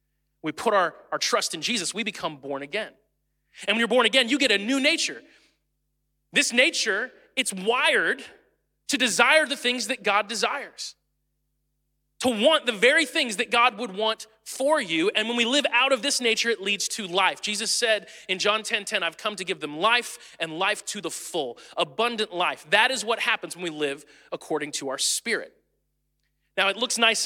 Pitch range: 165-230 Hz